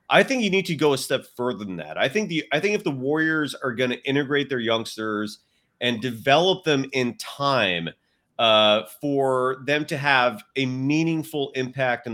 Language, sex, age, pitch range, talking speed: English, male, 30-49, 125-160 Hz, 195 wpm